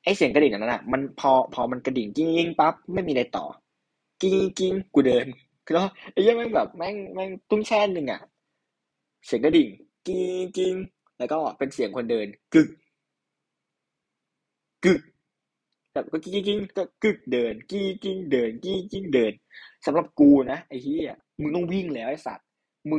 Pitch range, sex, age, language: 150-200 Hz, male, 20-39, Thai